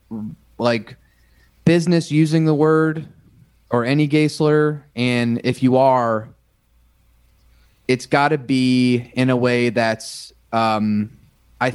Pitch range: 110-130 Hz